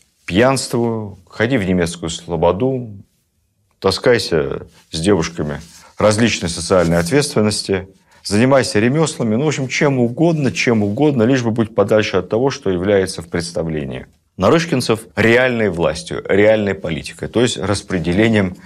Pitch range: 90-120 Hz